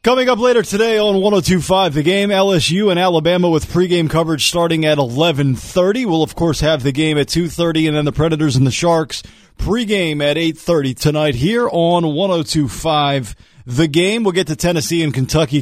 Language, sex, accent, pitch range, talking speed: English, male, American, 145-180 Hz, 180 wpm